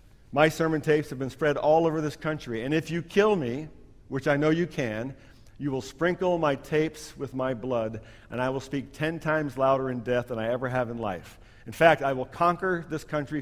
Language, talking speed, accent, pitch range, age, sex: English, 225 wpm, American, 115-155 Hz, 50-69, male